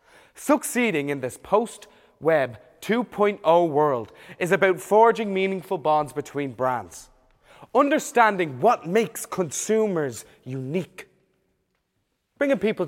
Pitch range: 145-215 Hz